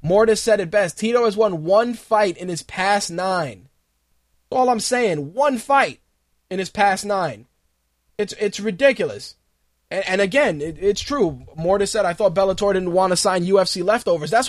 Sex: male